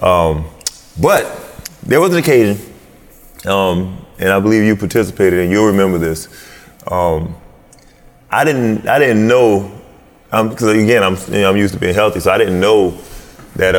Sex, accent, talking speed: male, American, 165 wpm